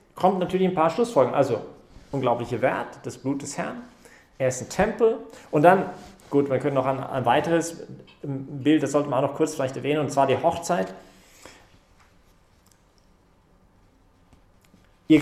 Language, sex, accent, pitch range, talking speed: English, male, German, 130-170 Hz, 155 wpm